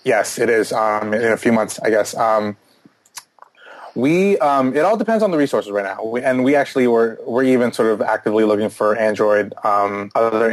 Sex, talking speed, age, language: male, 205 wpm, 20-39, English